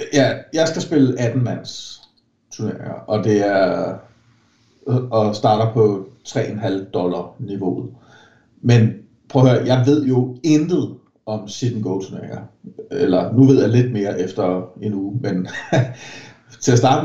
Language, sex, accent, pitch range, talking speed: Danish, male, native, 105-130 Hz, 145 wpm